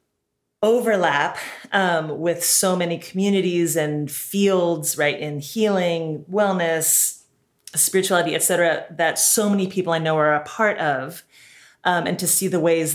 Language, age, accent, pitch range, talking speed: English, 30-49, American, 150-185 Hz, 140 wpm